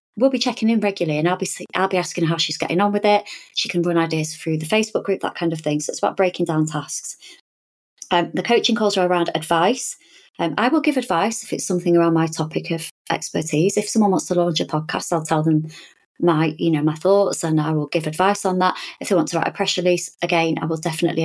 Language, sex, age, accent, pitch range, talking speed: English, female, 30-49, British, 160-190 Hz, 250 wpm